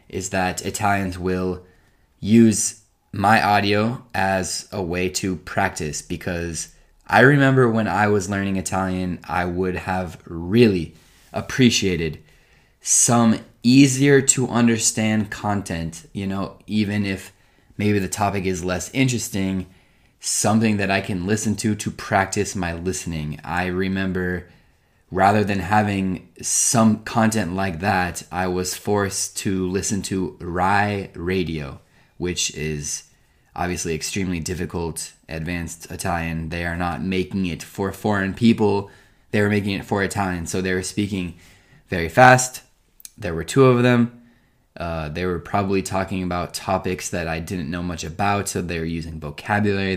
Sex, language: male, Italian